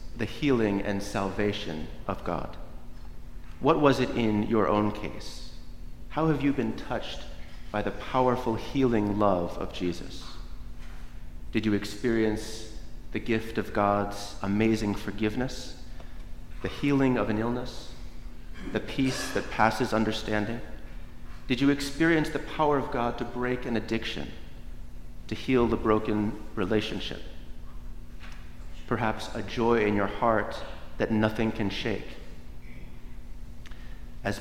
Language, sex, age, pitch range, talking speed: English, male, 30-49, 85-115 Hz, 125 wpm